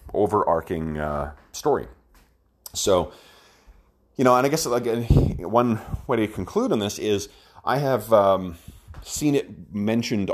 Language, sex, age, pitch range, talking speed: English, male, 30-49, 85-105 Hz, 135 wpm